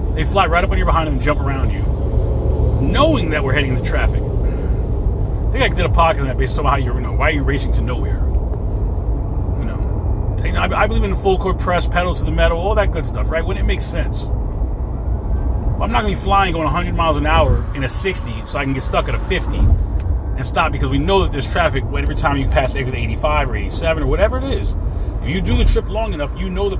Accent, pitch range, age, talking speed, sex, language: American, 75-100 Hz, 30-49, 255 wpm, male, English